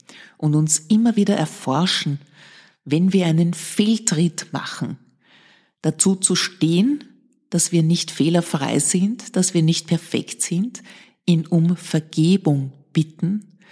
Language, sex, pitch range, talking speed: German, female, 140-180 Hz, 120 wpm